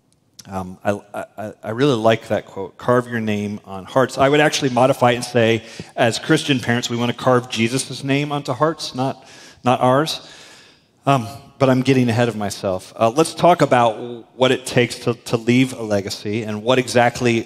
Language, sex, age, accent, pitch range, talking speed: English, male, 40-59, American, 110-130 Hz, 195 wpm